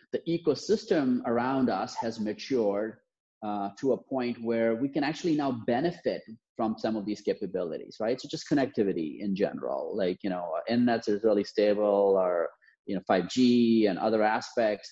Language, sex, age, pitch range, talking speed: English, male, 30-49, 105-135 Hz, 170 wpm